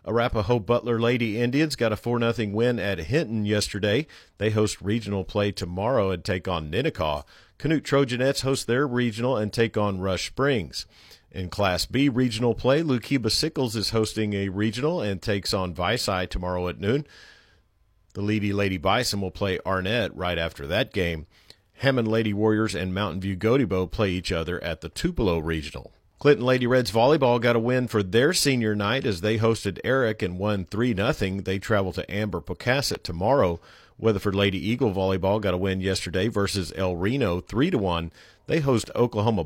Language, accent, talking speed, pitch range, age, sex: English, American, 170 wpm, 95-120 Hz, 50-69, male